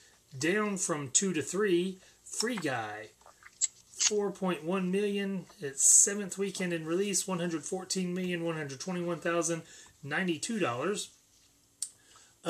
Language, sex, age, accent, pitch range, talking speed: English, male, 30-49, American, 140-175 Hz, 70 wpm